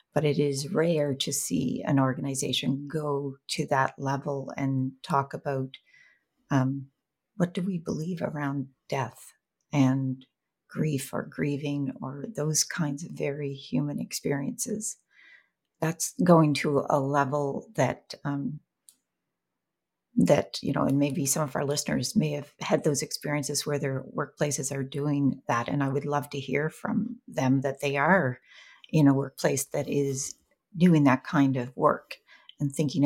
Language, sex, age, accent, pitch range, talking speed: English, female, 40-59, American, 135-155 Hz, 150 wpm